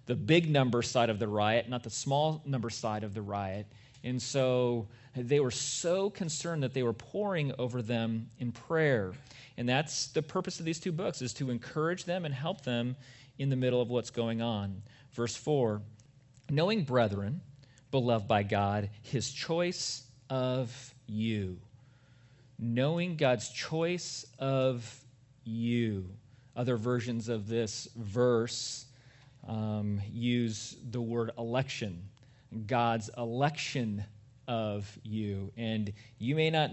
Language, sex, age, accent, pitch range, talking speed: English, male, 40-59, American, 115-135 Hz, 140 wpm